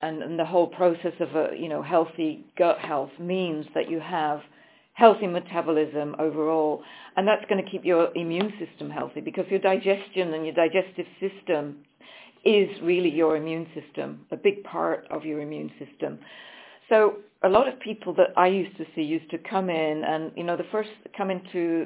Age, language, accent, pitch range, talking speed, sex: 50-69, English, British, 160-200 Hz, 180 wpm, female